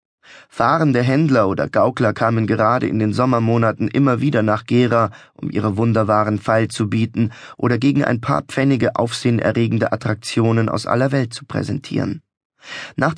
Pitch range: 110-130 Hz